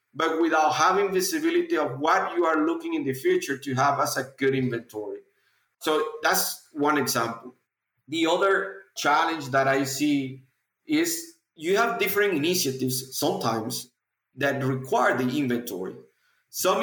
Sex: male